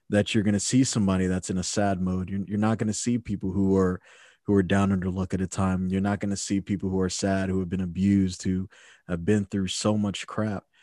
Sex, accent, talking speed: male, American, 260 wpm